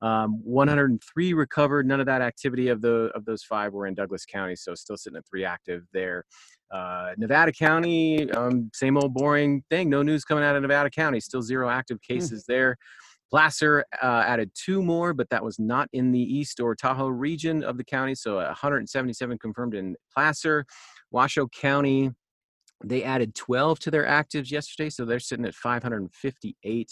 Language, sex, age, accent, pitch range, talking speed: English, male, 30-49, American, 110-140 Hz, 180 wpm